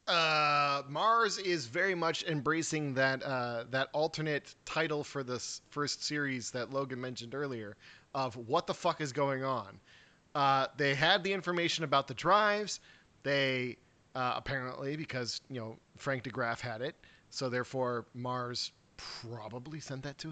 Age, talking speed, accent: 30-49, 150 wpm, American